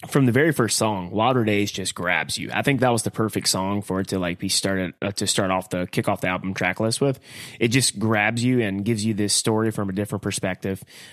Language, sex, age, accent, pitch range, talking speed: English, male, 20-39, American, 100-115 Hz, 260 wpm